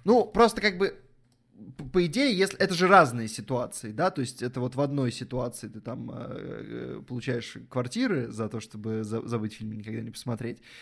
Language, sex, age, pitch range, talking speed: Russian, male, 20-39, 120-150 Hz, 170 wpm